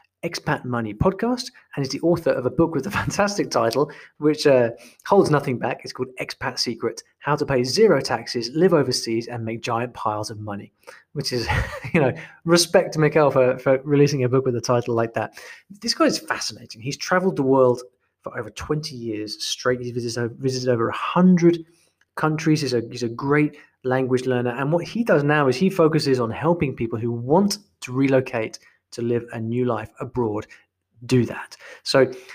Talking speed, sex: 190 wpm, male